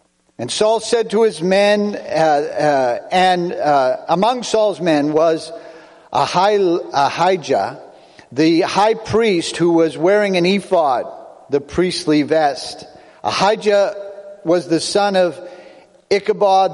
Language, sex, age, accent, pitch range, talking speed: English, male, 50-69, American, 155-200 Hz, 115 wpm